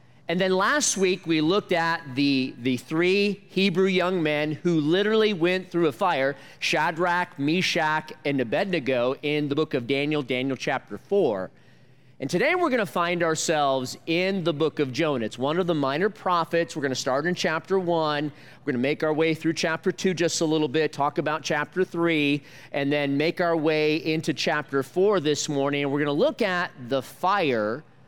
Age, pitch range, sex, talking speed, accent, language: 40-59, 145-185 Hz, male, 185 wpm, American, English